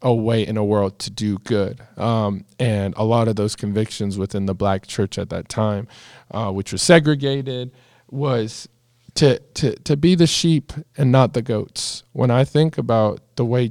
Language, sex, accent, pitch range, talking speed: English, male, American, 105-125 Hz, 190 wpm